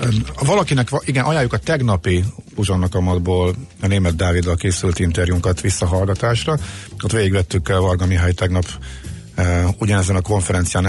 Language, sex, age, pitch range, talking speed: Hungarian, male, 50-69, 90-110 Hz, 115 wpm